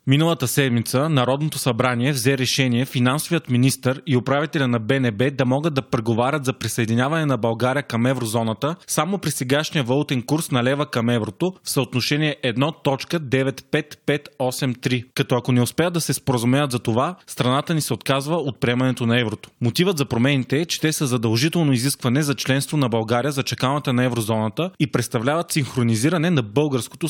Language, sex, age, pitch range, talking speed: Bulgarian, male, 20-39, 120-145 Hz, 160 wpm